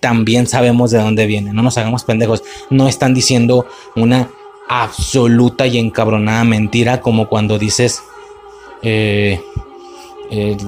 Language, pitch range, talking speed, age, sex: Spanish, 110-130 Hz, 125 wpm, 20-39, male